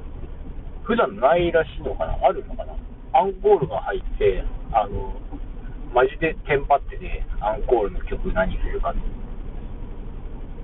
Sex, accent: male, native